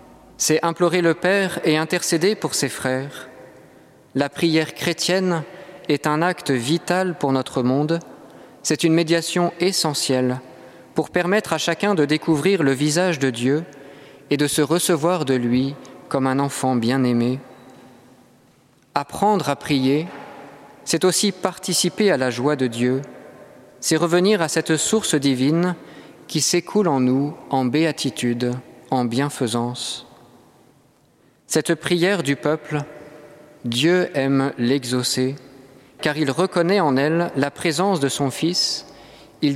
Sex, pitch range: male, 130-170 Hz